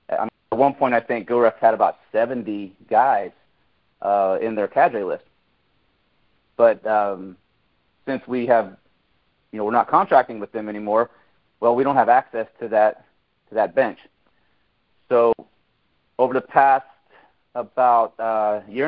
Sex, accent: male, American